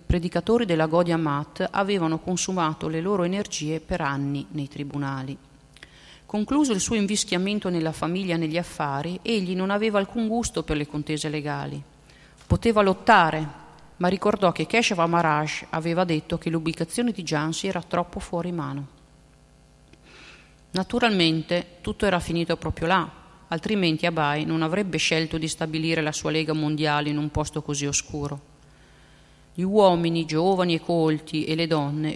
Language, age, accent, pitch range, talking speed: Italian, 40-59, native, 150-195 Hz, 145 wpm